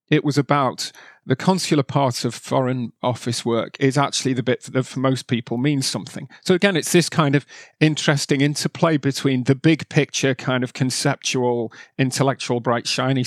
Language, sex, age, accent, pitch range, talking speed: English, male, 40-59, British, 125-145 Hz, 170 wpm